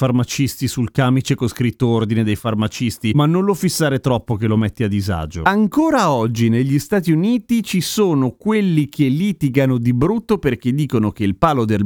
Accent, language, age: native, Italian, 30-49